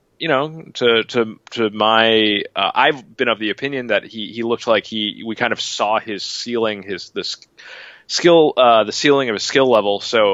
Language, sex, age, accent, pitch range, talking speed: English, male, 30-49, American, 100-125 Hz, 205 wpm